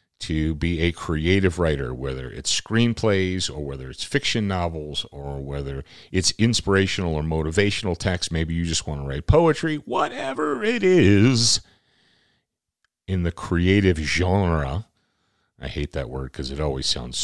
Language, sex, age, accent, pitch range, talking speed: English, male, 40-59, American, 80-115 Hz, 145 wpm